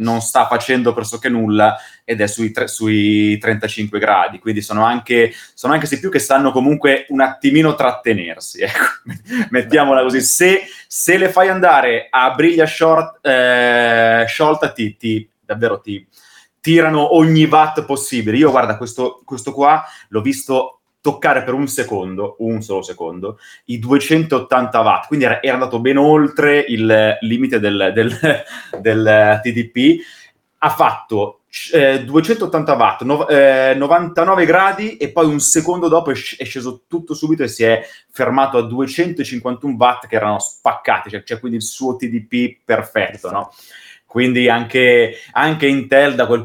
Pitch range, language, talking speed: 115-145 Hz, Italian, 145 wpm